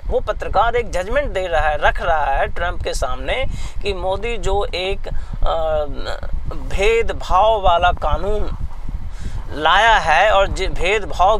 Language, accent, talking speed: Hindi, native, 125 wpm